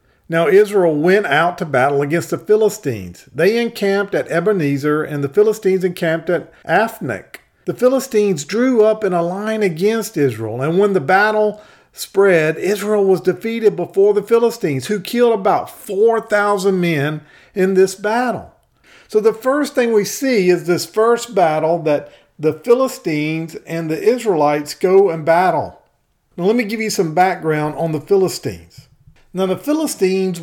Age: 50-69